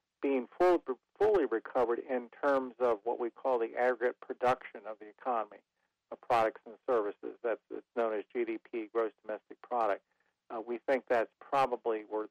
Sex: male